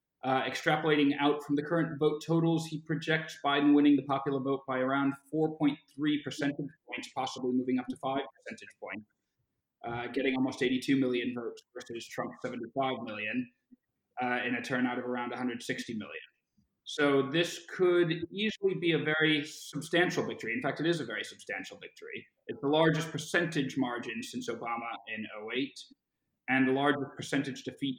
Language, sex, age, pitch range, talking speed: English, male, 30-49, 130-155 Hz, 165 wpm